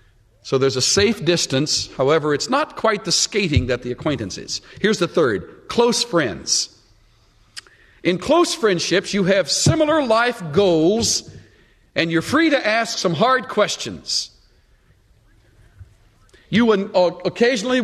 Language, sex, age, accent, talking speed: English, male, 50-69, American, 130 wpm